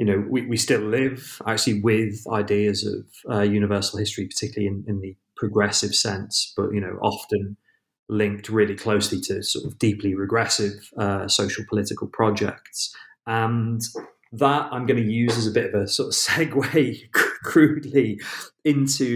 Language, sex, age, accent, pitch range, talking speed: English, male, 30-49, British, 100-115 Hz, 160 wpm